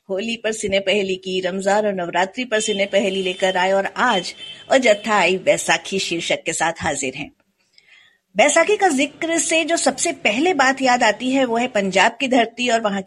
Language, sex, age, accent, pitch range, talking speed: Hindi, female, 50-69, native, 185-245 Hz, 180 wpm